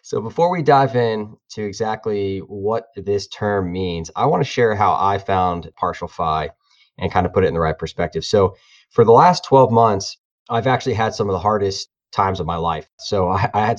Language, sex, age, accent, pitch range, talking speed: English, male, 20-39, American, 90-120 Hz, 220 wpm